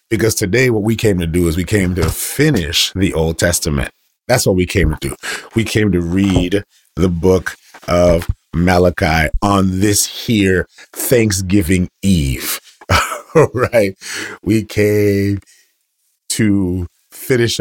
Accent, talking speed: American, 135 wpm